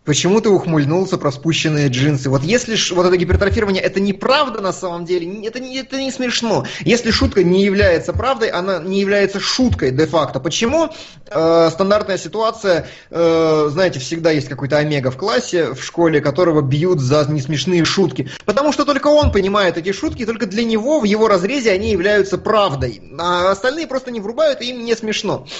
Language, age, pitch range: Russian, 20-39, 150-215 Hz